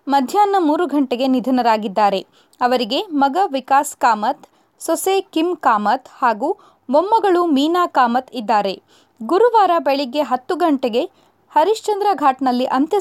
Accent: native